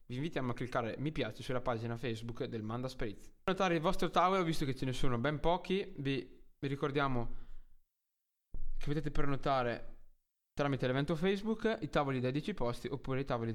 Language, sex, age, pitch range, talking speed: Italian, male, 20-39, 120-155 Hz, 175 wpm